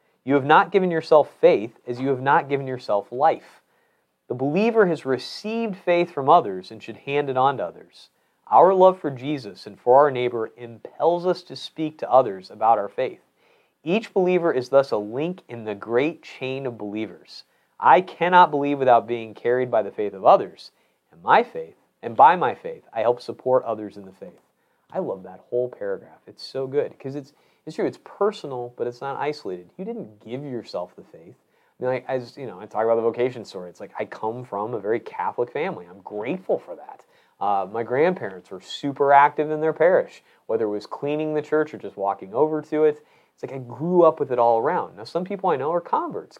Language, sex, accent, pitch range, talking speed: English, male, American, 120-175 Hz, 215 wpm